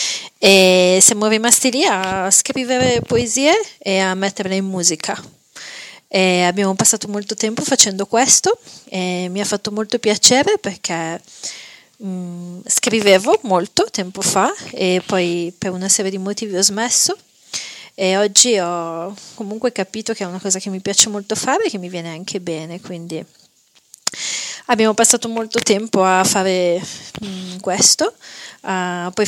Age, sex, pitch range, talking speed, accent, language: 30-49, female, 180-220 Hz, 135 wpm, native, Italian